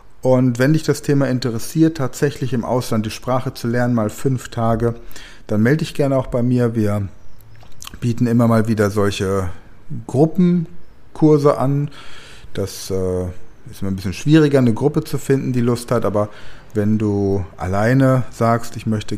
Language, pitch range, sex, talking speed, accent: German, 100-130 Hz, male, 160 wpm, German